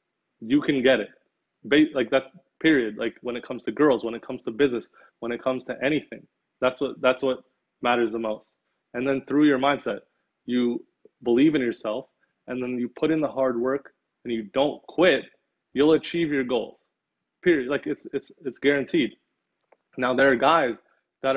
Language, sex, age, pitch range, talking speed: English, male, 20-39, 125-145 Hz, 185 wpm